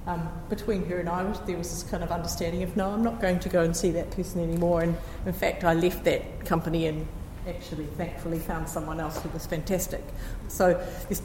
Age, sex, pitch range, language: 40-59, female, 170-200 Hz, English